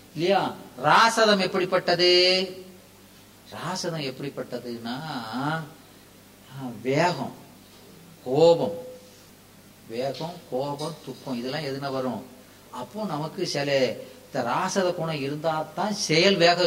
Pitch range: 145-205 Hz